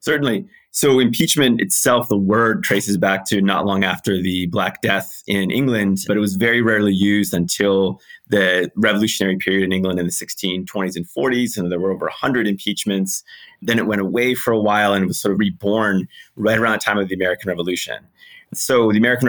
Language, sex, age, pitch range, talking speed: English, male, 30-49, 95-110 Hz, 200 wpm